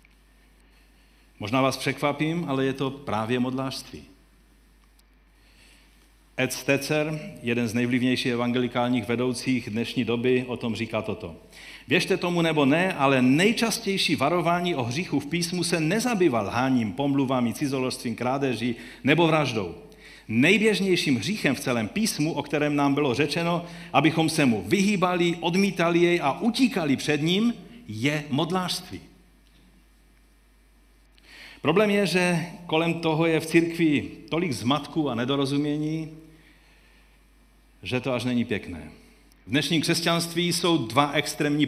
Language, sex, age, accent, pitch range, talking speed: Czech, male, 50-69, native, 125-170 Hz, 120 wpm